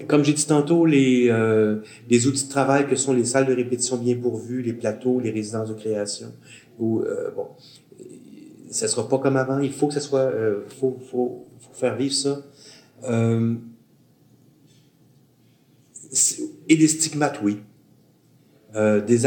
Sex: male